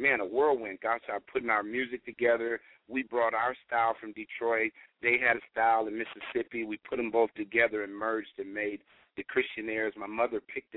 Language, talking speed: English, 200 wpm